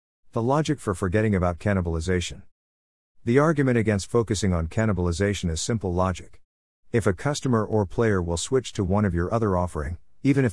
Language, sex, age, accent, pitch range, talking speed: English, male, 50-69, American, 90-115 Hz, 170 wpm